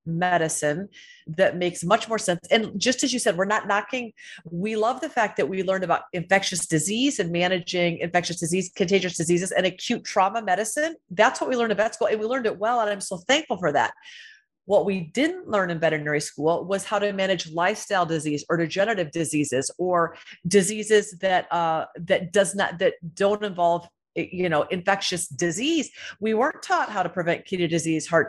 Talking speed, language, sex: 195 wpm, English, female